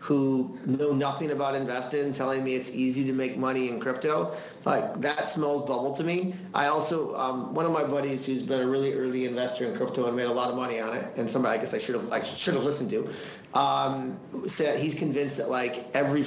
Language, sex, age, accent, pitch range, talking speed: English, male, 30-49, American, 125-160 Hz, 220 wpm